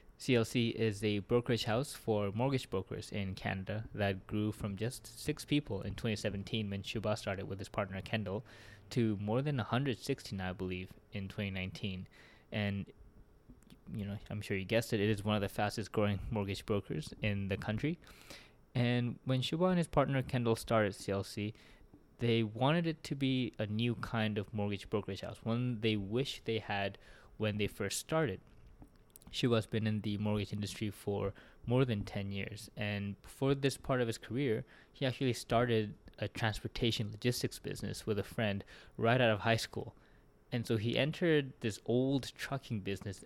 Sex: male